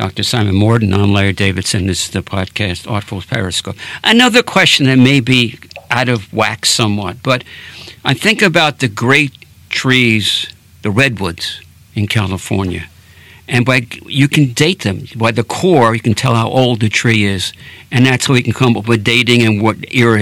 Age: 60-79